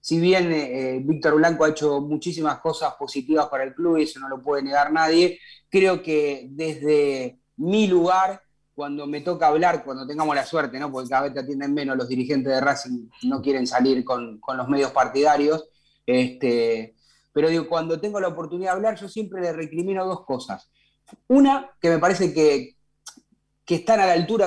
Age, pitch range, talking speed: 30-49, 145-180 Hz, 190 wpm